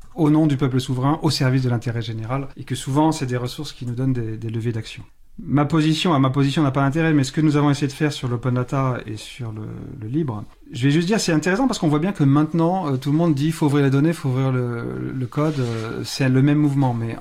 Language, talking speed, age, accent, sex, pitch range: French, 275 wpm, 40-59, French, male, 120-145 Hz